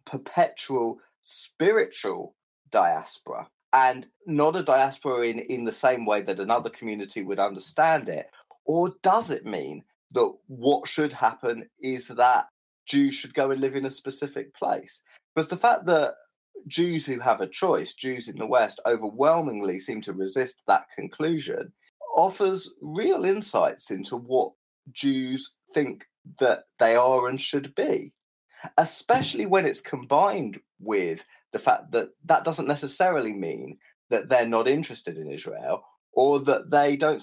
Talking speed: 145 wpm